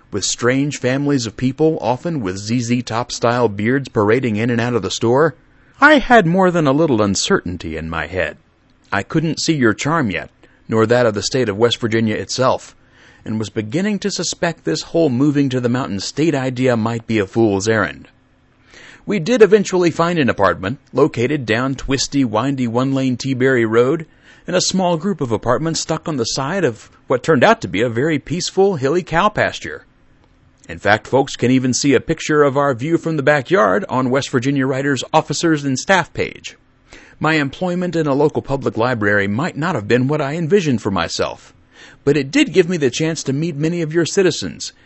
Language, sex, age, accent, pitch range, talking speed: English, male, 40-59, American, 120-165 Hz, 190 wpm